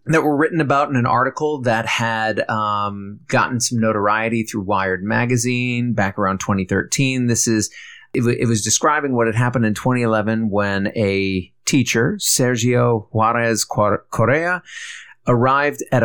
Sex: male